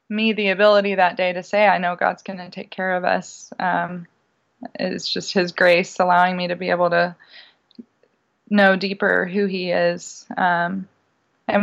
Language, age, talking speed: English, 20-39, 175 wpm